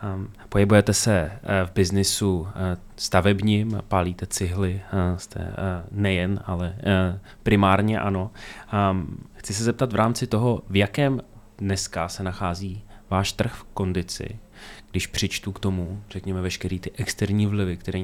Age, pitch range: 20-39, 90-100 Hz